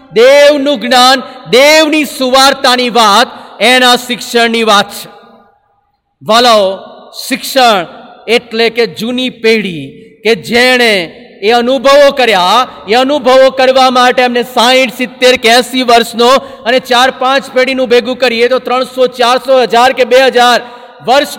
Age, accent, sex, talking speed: 40-59, native, male, 40 wpm